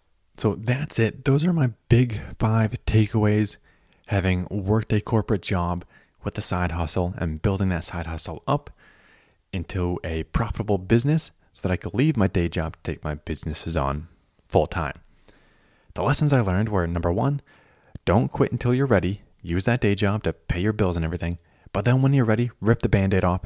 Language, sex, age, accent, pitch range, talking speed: English, male, 20-39, American, 80-110 Hz, 185 wpm